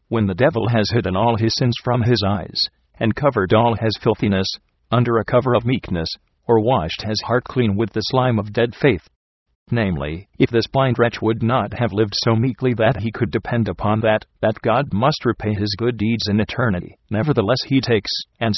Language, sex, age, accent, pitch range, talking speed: English, male, 50-69, American, 100-120 Hz, 200 wpm